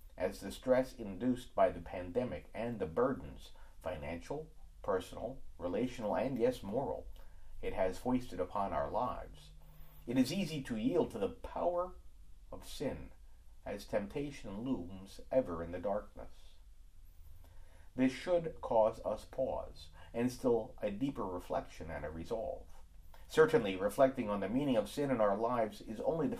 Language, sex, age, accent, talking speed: English, male, 50-69, American, 150 wpm